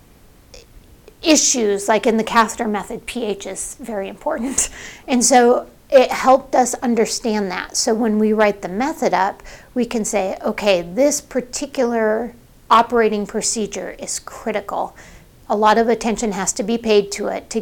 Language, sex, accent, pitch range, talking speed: English, female, American, 200-245 Hz, 155 wpm